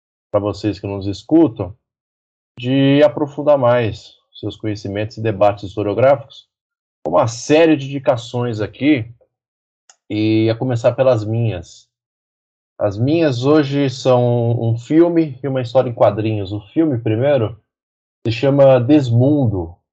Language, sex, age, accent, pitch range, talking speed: Portuguese, male, 20-39, Brazilian, 105-130 Hz, 120 wpm